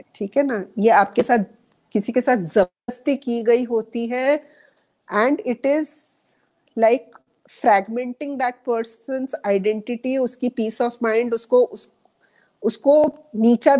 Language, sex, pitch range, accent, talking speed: Hindi, female, 210-250 Hz, native, 115 wpm